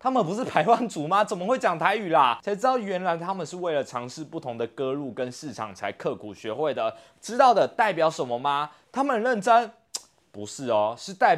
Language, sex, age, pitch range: Chinese, male, 20-39, 125-205 Hz